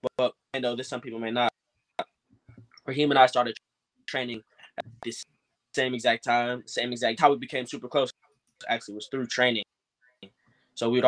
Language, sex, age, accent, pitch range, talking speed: English, male, 10-29, American, 115-130 Hz, 170 wpm